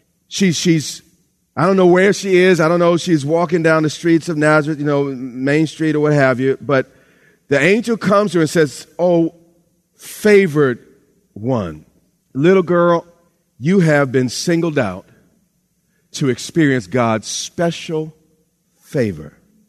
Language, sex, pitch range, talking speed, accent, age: English, male, 145-190 Hz, 150 wpm, American, 40-59